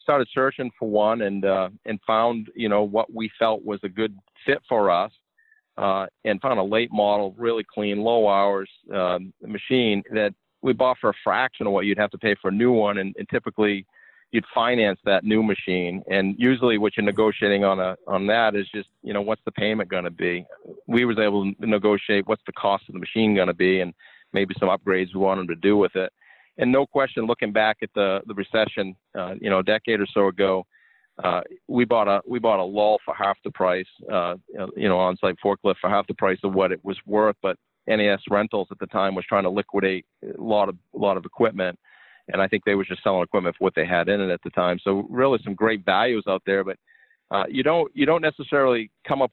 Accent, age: American, 40-59